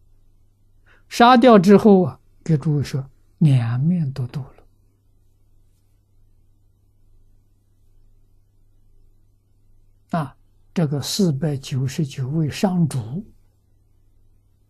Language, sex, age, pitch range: Chinese, male, 60-79, 100-135 Hz